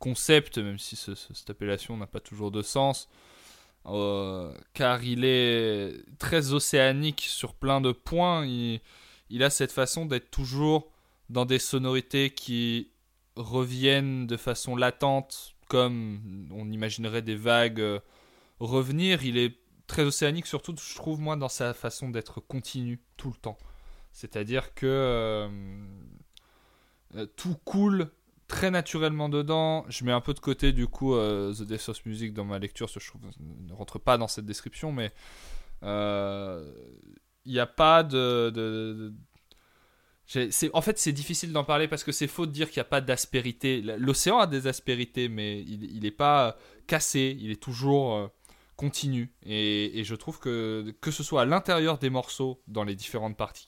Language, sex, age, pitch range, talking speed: French, male, 20-39, 110-140 Hz, 165 wpm